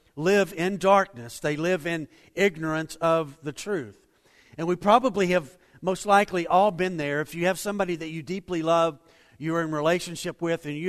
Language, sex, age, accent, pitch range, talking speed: English, male, 50-69, American, 150-185 Hz, 185 wpm